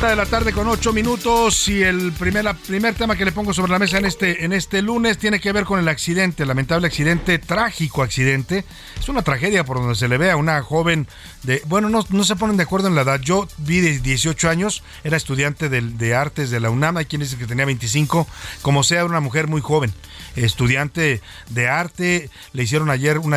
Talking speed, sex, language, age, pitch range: 230 wpm, male, Spanish, 40-59, 130-175 Hz